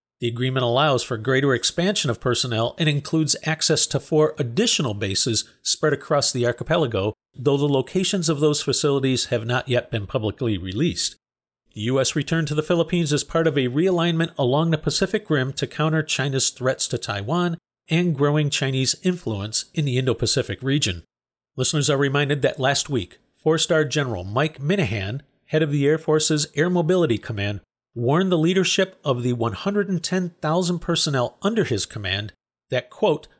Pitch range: 125-160 Hz